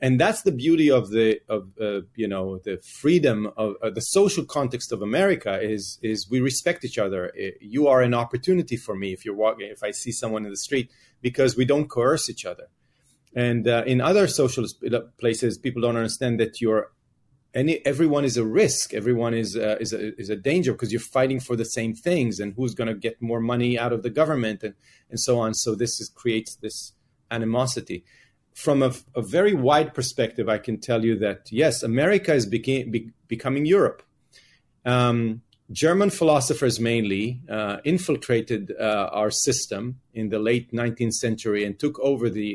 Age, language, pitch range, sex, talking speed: 30-49, English, 110-135 Hz, male, 190 wpm